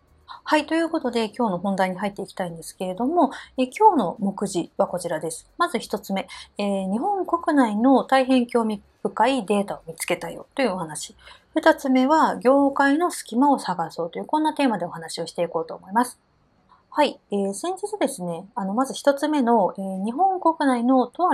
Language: Japanese